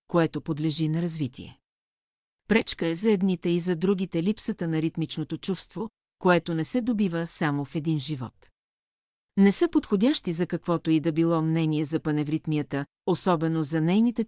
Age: 40-59